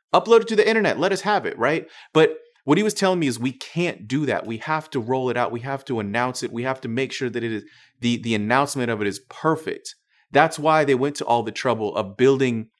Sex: male